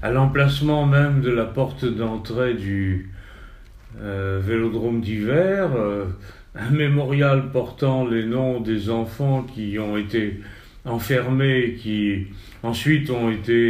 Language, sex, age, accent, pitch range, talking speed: French, male, 40-59, French, 105-135 Hz, 120 wpm